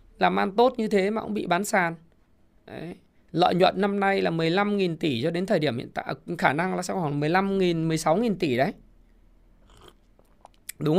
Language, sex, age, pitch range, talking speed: Vietnamese, male, 20-39, 130-190 Hz, 185 wpm